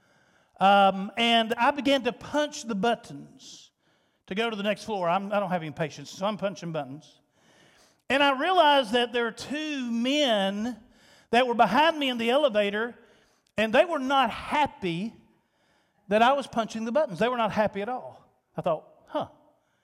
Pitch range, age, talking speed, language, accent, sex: 210-270 Hz, 50-69, 180 wpm, English, American, male